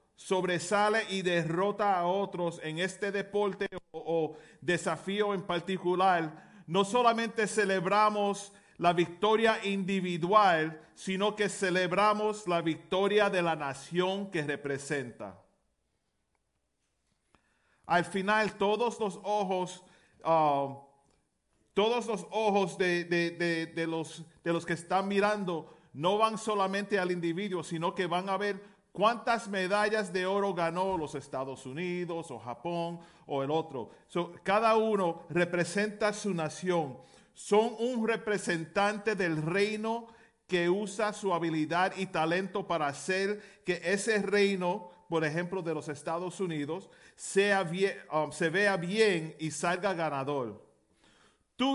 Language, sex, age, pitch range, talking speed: Spanish, male, 40-59, 165-205 Hz, 120 wpm